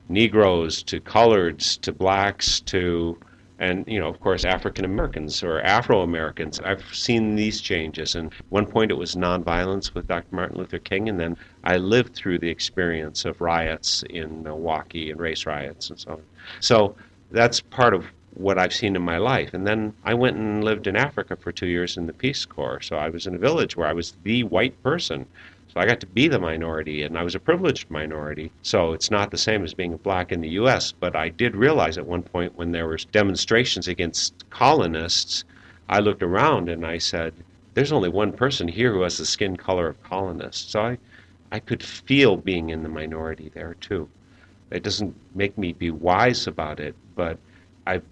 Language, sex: English, male